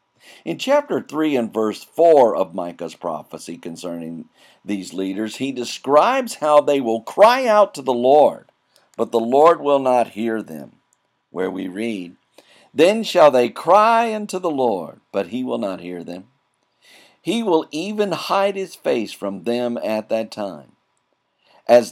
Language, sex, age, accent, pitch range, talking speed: English, male, 50-69, American, 105-160 Hz, 155 wpm